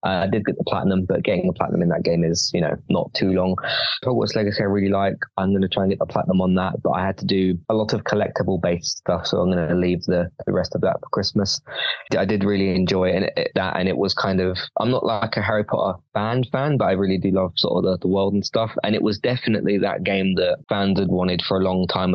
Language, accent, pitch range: English, British, 95-115 Hz